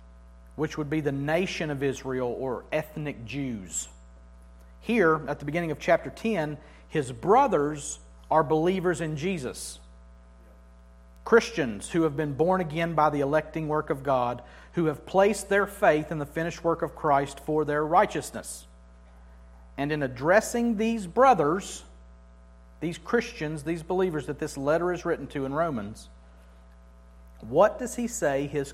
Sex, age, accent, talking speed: male, 50-69, American, 150 wpm